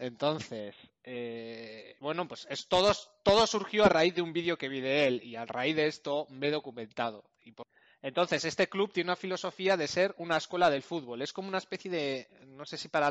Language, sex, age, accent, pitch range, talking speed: Spanish, male, 20-39, Spanish, 130-160 Hz, 220 wpm